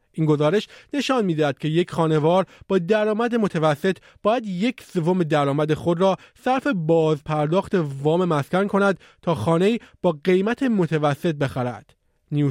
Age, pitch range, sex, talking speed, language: 30-49, 150-195 Hz, male, 140 wpm, Persian